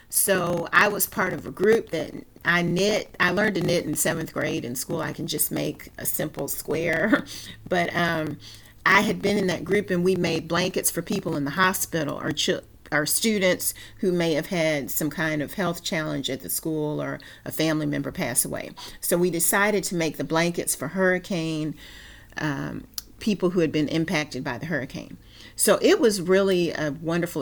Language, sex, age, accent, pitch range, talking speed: English, female, 40-59, American, 150-180 Hz, 195 wpm